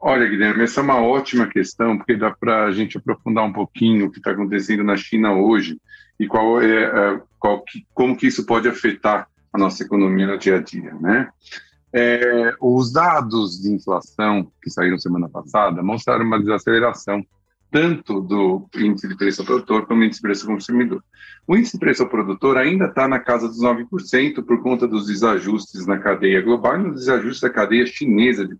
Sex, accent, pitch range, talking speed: male, Brazilian, 100-135 Hz, 195 wpm